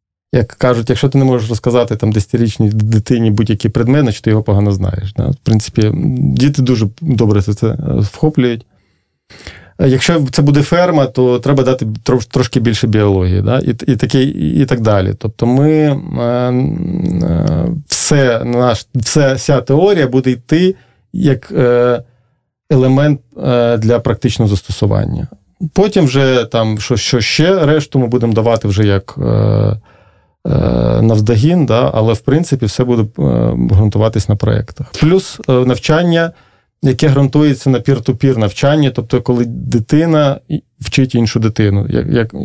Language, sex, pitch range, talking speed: Russian, male, 110-135 Hz, 130 wpm